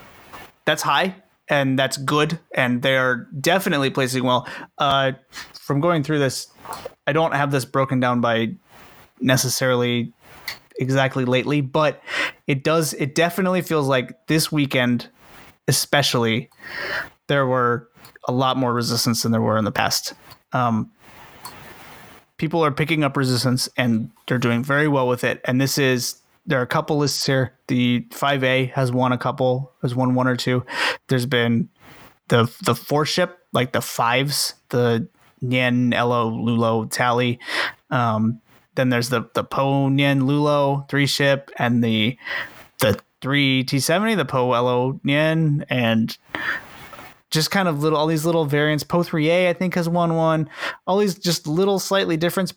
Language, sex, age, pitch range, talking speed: English, male, 30-49, 125-155 Hz, 160 wpm